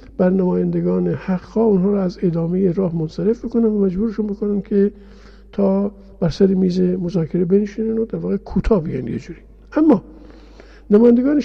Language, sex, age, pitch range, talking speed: Persian, male, 50-69, 190-225 Hz, 145 wpm